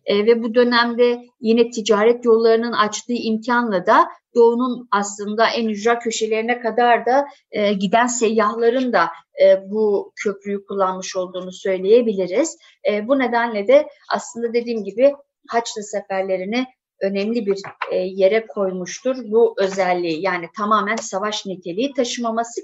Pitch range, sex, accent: 195-240 Hz, female, native